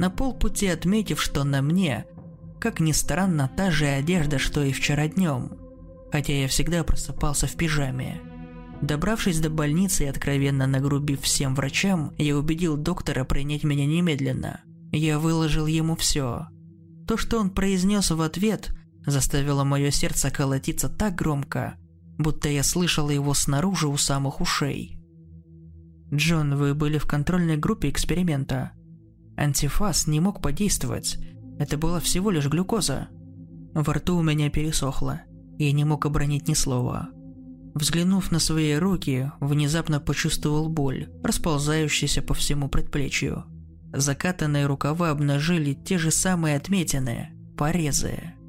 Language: Russian